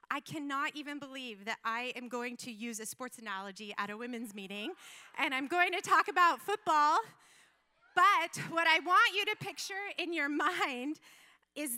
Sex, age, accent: female, 30-49, American